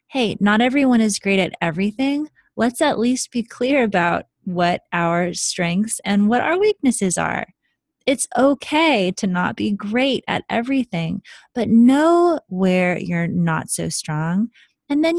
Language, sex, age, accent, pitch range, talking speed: English, female, 20-39, American, 185-255 Hz, 150 wpm